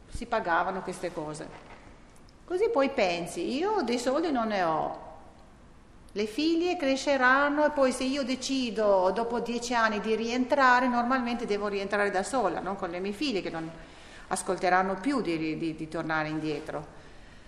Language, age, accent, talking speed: Italian, 40-59, native, 155 wpm